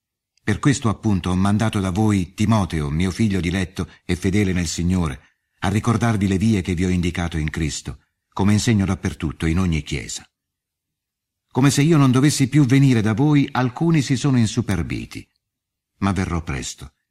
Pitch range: 85-110 Hz